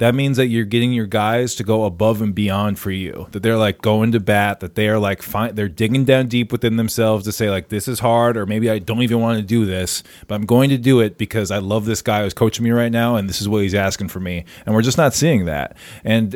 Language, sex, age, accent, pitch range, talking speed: English, male, 20-39, American, 105-120 Hz, 285 wpm